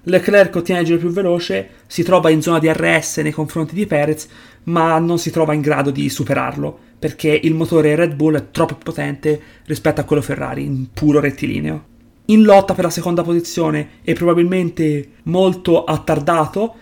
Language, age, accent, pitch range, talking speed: Italian, 30-49, native, 145-170 Hz, 175 wpm